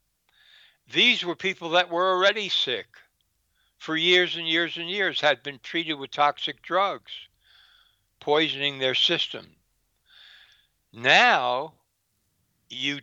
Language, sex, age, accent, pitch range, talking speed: English, male, 60-79, American, 105-160 Hz, 110 wpm